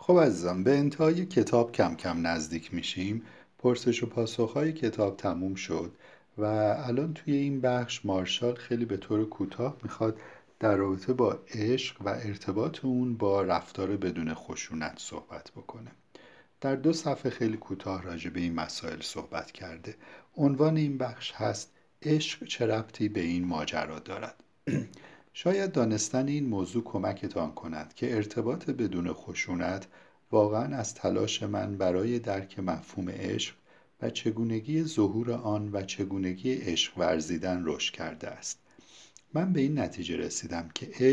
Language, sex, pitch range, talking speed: Persian, male, 100-130 Hz, 140 wpm